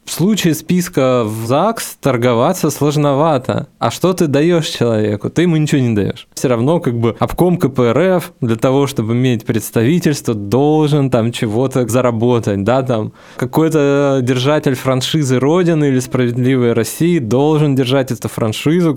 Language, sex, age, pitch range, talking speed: Russian, male, 20-39, 115-145 Hz, 140 wpm